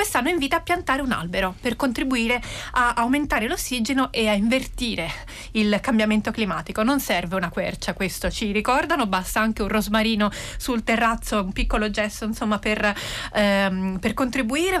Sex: female